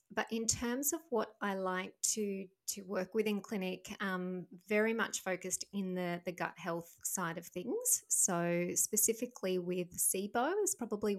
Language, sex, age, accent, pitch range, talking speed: English, female, 20-39, Australian, 185-215 Hz, 165 wpm